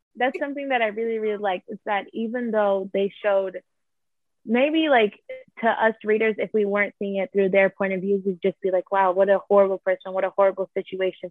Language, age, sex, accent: English, 20-39, female, American